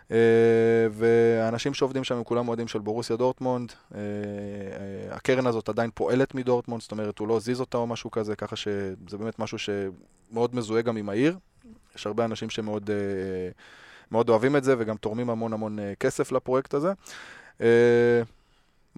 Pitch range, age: 105-120 Hz, 20-39